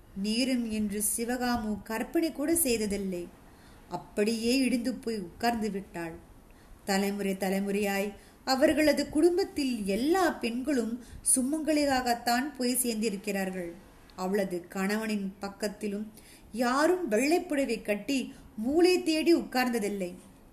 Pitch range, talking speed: 210-280 Hz, 55 wpm